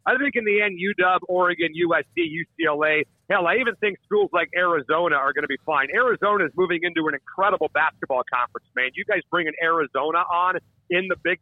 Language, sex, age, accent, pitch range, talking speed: English, male, 40-59, American, 165-210 Hz, 205 wpm